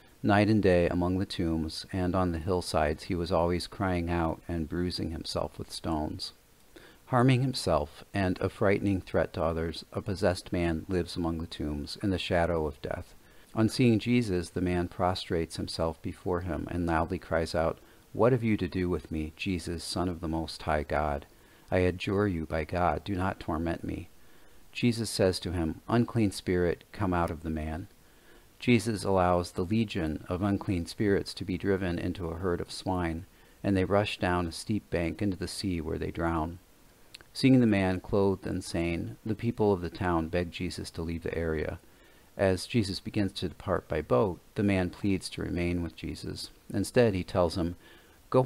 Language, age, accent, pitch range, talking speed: English, 40-59, American, 85-100 Hz, 185 wpm